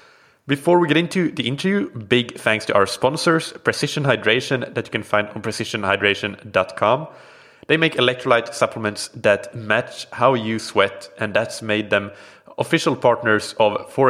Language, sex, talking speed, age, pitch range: English, male, 155 wpm, 20-39, 105-125 Hz